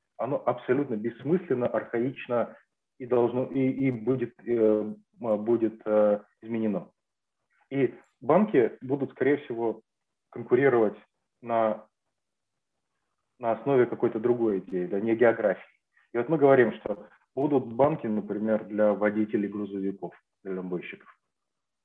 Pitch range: 110-135 Hz